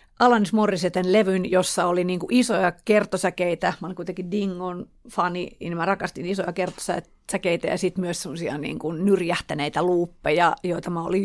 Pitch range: 175-210 Hz